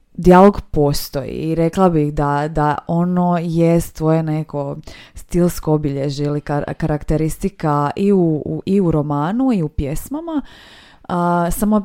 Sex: female